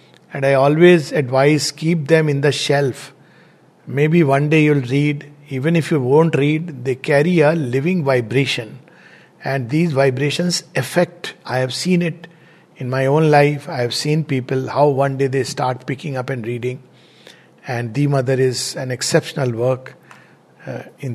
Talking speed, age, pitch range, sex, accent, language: 165 wpm, 60-79, 135-165 Hz, male, Indian, English